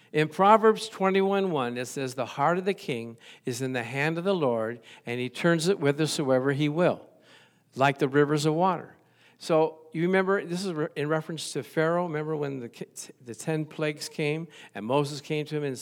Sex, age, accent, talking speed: male, 60-79, American, 195 wpm